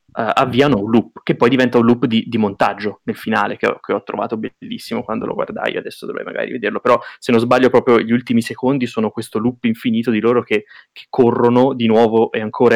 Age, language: 20-39, Italian